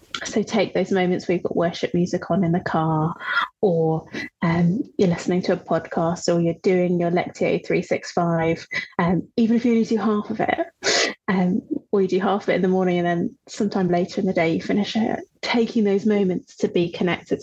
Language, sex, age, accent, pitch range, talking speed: English, female, 30-49, British, 175-225 Hz, 215 wpm